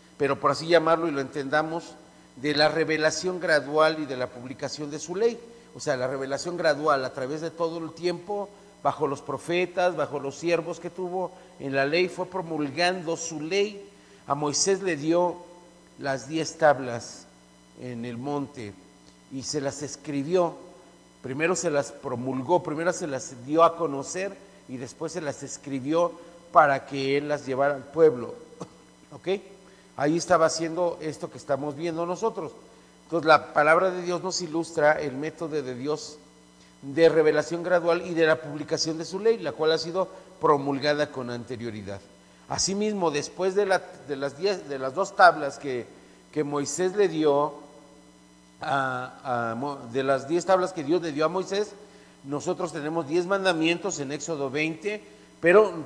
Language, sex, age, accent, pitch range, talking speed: Spanish, male, 40-59, Mexican, 140-175 Hz, 165 wpm